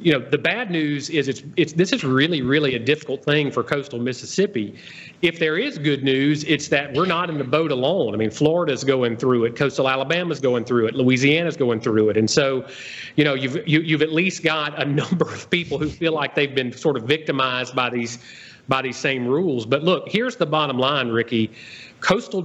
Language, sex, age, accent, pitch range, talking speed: English, male, 40-59, American, 130-155 Hz, 220 wpm